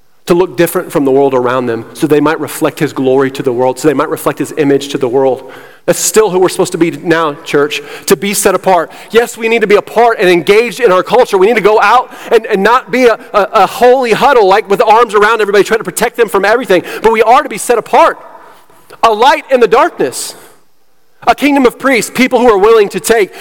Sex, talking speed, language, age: male, 250 wpm, English, 30-49